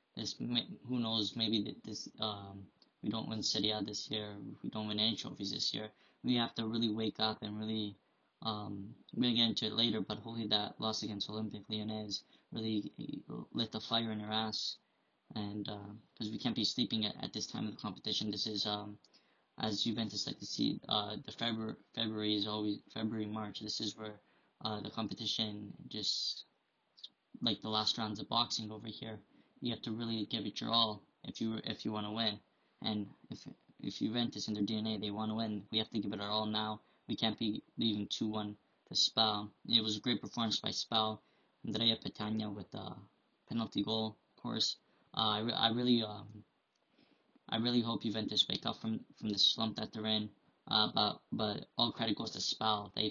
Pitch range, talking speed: 105-110 Hz, 200 wpm